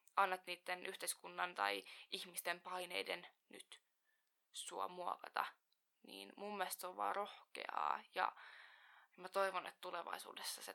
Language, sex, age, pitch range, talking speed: Finnish, female, 20-39, 185-215 Hz, 125 wpm